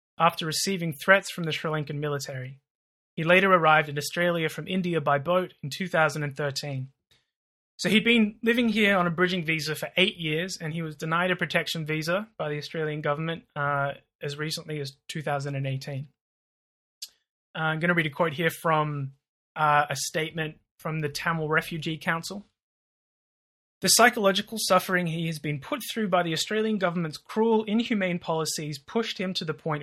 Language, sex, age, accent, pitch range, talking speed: English, male, 20-39, Australian, 150-180 Hz, 165 wpm